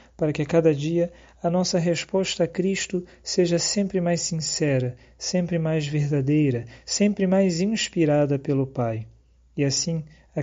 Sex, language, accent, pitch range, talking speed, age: male, Portuguese, Brazilian, 135-160 Hz, 145 wpm, 40-59